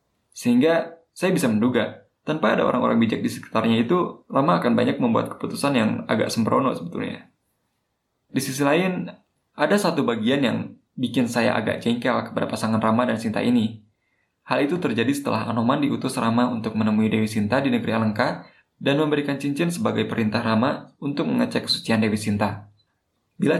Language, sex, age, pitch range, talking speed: Indonesian, male, 20-39, 105-130 Hz, 160 wpm